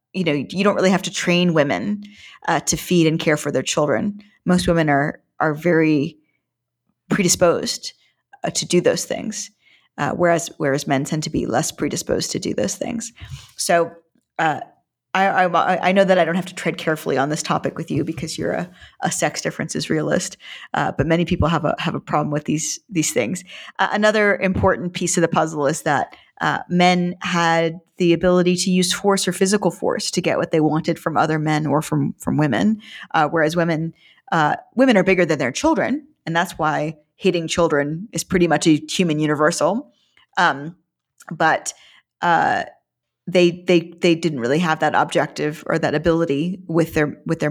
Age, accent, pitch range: 40-59, American, 155-185 Hz